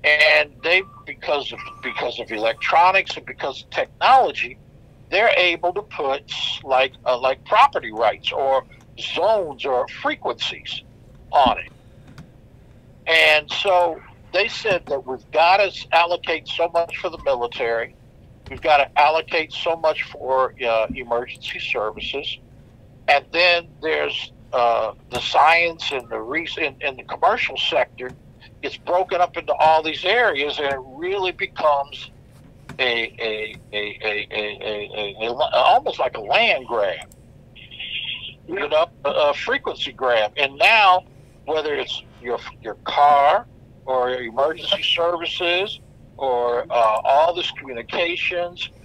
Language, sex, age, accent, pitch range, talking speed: English, male, 60-79, American, 125-170 Hz, 135 wpm